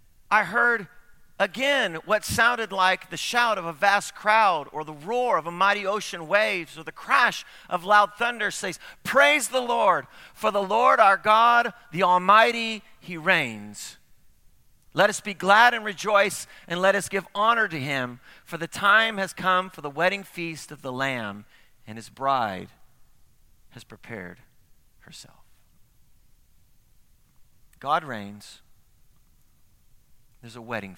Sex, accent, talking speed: male, American, 145 wpm